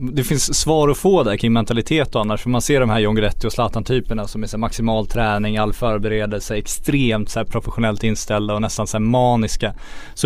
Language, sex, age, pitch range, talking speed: Swedish, male, 20-39, 110-125 Hz, 200 wpm